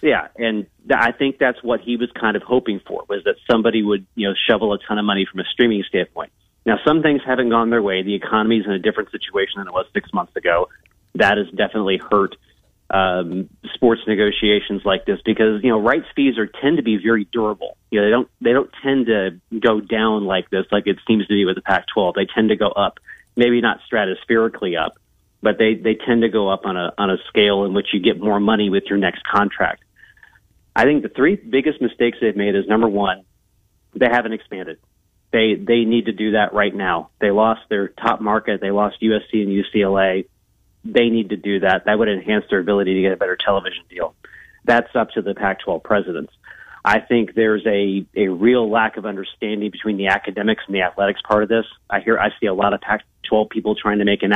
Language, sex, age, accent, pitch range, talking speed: English, male, 30-49, American, 100-115 Hz, 225 wpm